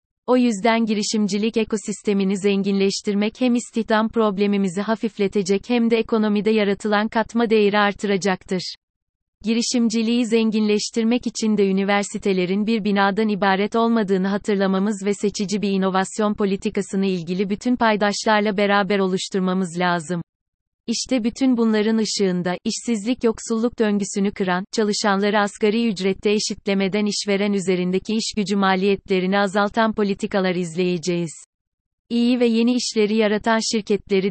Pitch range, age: 190-220 Hz, 30-49